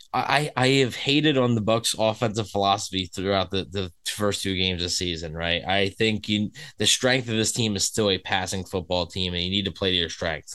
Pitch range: 95-120 Hz